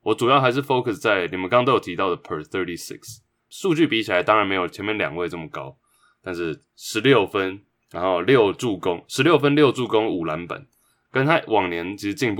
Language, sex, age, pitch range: English, male, 20-39, 105-145 Hz